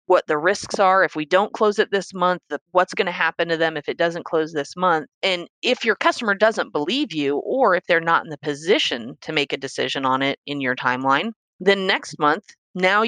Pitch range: 145-185 Hz